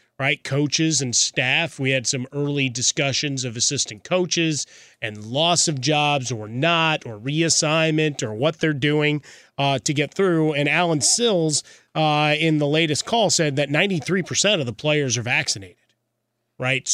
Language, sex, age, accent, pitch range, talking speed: English, male, 30-49, American, 130-155 Hz, 165 wpm